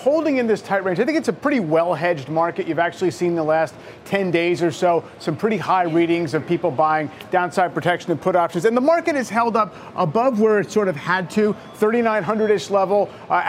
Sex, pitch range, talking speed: male, 175-215 Hz, 220 wpm